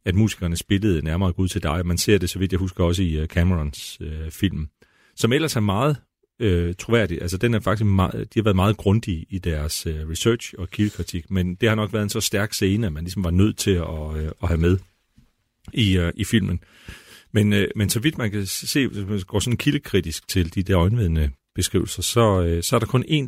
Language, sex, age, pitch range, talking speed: Danish, male, 40-59, 85-105 Hz, 230 wpm